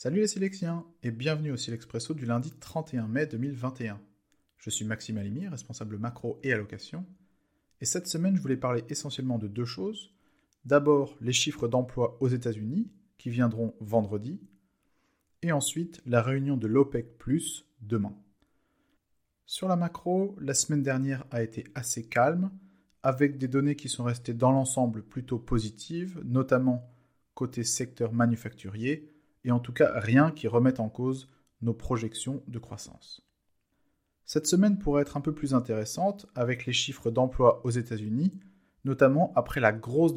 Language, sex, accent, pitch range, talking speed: English, male, French, 115-150 Hz, 150 wpm